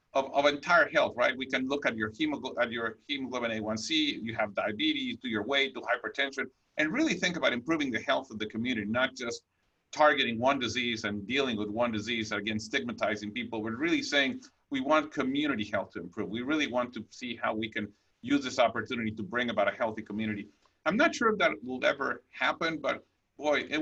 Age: 50-69